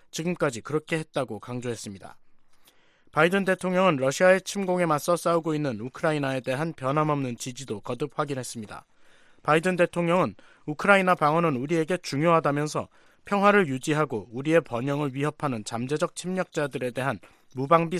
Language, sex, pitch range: Korean, male, 130-175 Hz